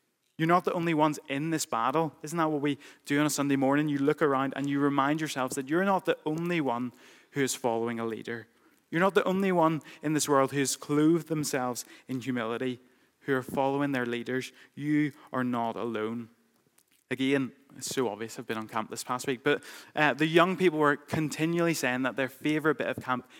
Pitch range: 125-155 Hz